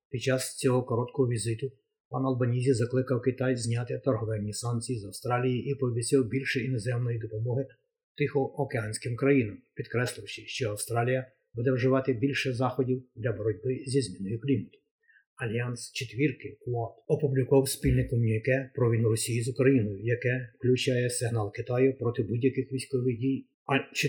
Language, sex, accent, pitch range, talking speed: Ukrainian, male, native, 115-135 Hz, 125 wpm